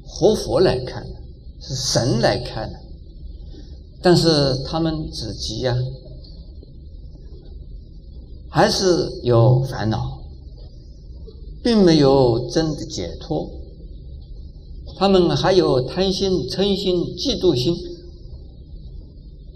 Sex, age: male, 50-69